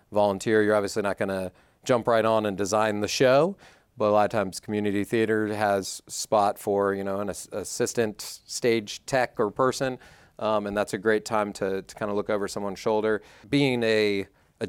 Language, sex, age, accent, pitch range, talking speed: English, male, 40-59, American, 100-110 Hz, 190 wpm